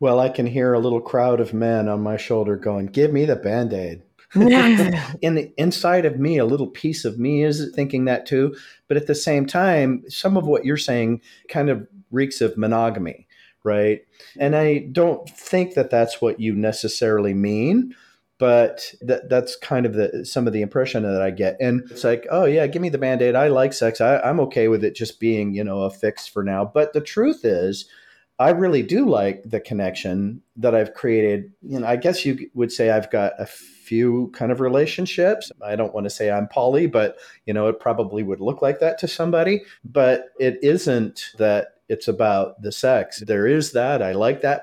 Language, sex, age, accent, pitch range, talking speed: English, male, 40-59, American, 105-140 Hz, 205 wpm